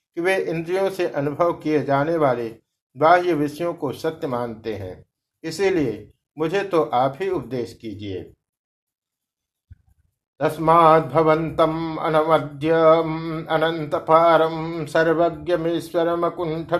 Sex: male